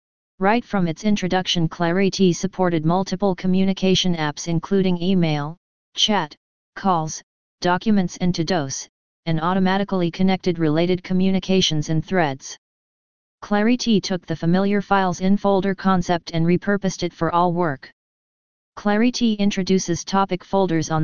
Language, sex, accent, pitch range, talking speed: English, female, American, 165-195 Hz, 115 wpm